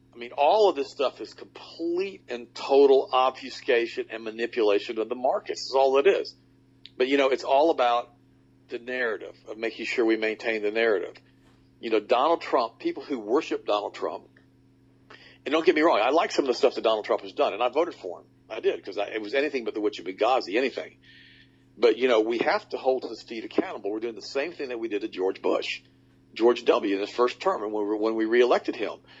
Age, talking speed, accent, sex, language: 50-69, 220 wpm, American, male, English